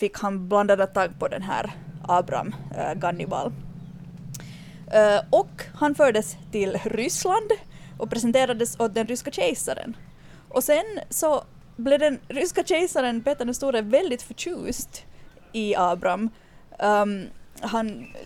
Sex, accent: female, Finnish